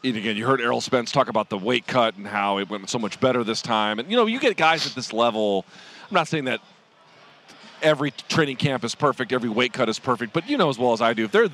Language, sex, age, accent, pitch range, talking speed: English, male, 40-59, American, 115-155 Hz, 275 wpm